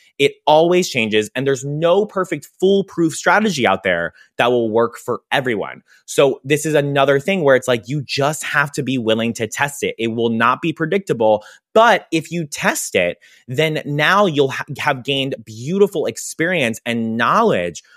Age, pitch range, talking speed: 20-39, 125-170 Hz, 175 wpm